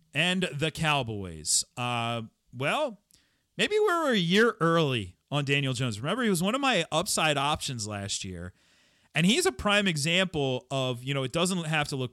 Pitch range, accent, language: 110-165 Hz, American, English